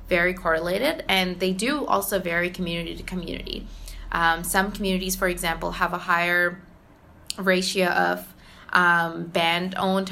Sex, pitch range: female, 170-185 Hz